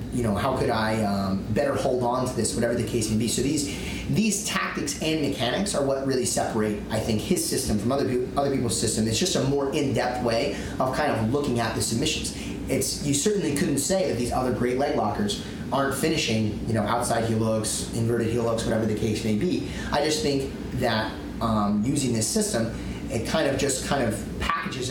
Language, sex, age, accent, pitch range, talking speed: English, male, 30-49, American, 105-130 Hz, 220 wpm